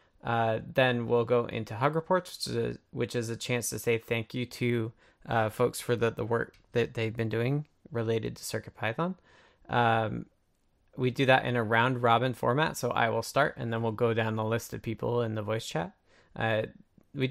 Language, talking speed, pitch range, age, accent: English, 200 wpm, 110-125 Hz, 20-39, American